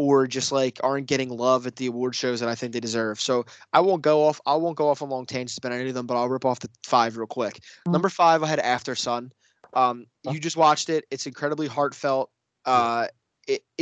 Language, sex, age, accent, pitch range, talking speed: English, male, 20-39, American, 120-145 Hz, 240 wpm